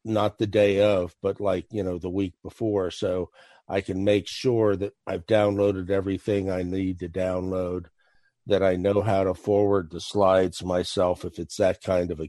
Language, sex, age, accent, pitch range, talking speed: English, male, 50-69, American, 95-105 Hz, 190 wpm